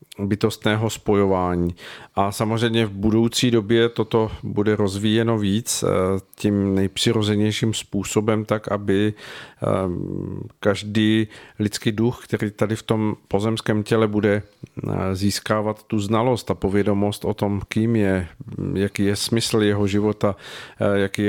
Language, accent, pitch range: Czech, native, 100-115 Hz